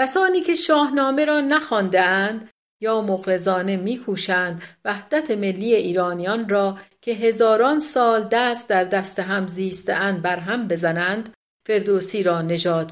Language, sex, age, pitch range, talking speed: Persian, female, 50-69, 180-245 Hz, 120 wpm